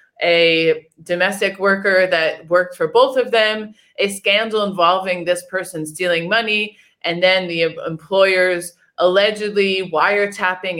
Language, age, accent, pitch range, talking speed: English, 20-39, American, 175-215 Hz, 120 wpm